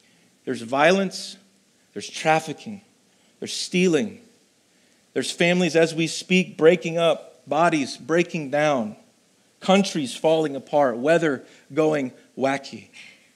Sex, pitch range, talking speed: male, 135-180 Hz, 100 wpm